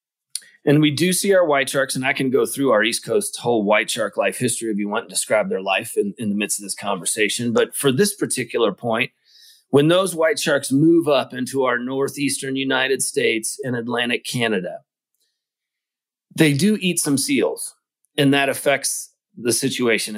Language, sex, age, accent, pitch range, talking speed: English, male, 30-49, American, 130-170 Hz, 185 wpm